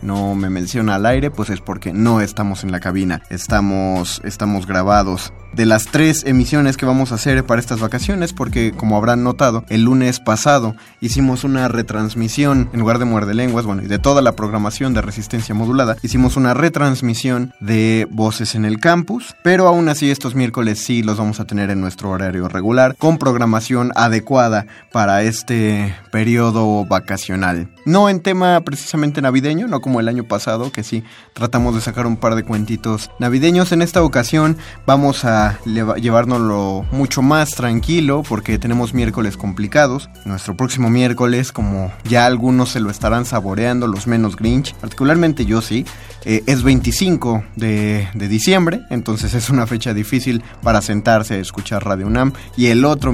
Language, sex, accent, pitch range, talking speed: Spanish, male, Mexican, 105-130 Hz, 170 wpm